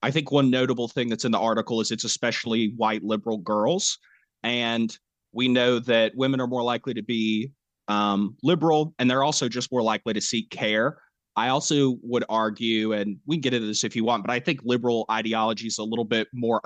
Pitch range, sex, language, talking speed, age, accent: 110-130 Hz, male, English, 215 wpm, 30-49, American